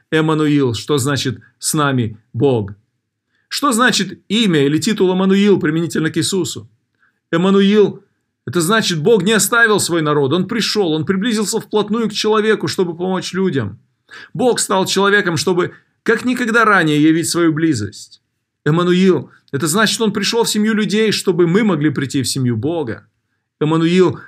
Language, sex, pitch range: Russian, male, 145-200 Hz